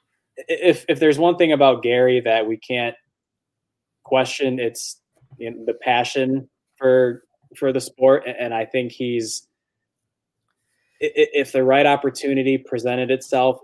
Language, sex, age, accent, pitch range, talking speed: English, male, 20-39, American, 110-130 Hz, 130 wpm